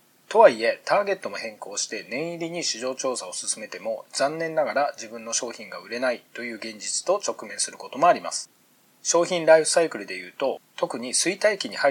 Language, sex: Japanese, male